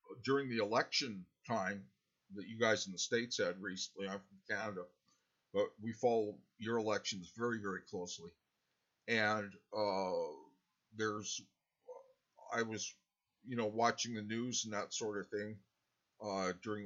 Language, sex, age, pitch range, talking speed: English, male, 50-69, 95-115 Hz, 140 wpm